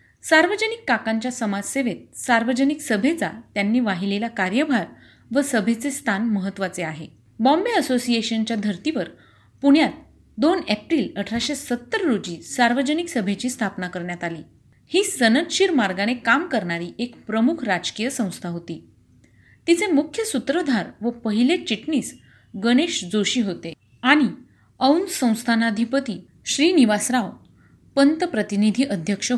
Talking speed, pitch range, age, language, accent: 105 wpm, 205-280 Hz, 30-49, Marathi, native